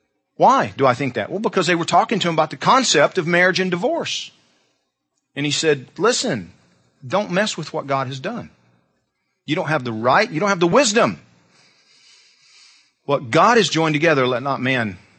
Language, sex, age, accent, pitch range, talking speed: English, male, 40-59, American, 115-170 Hz, 190 wpm